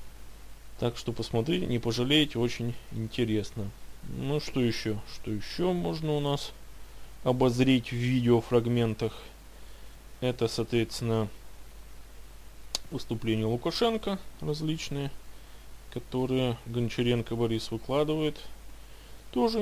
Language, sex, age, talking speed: Russian, male, 20-39, 85 wpm